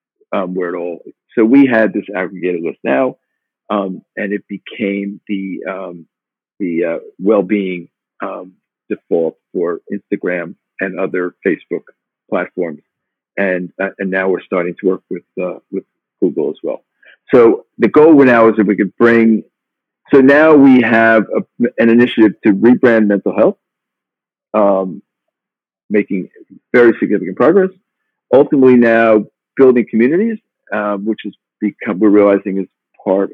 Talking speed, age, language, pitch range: 145 wpm, 50-69, English, 95-115 Hz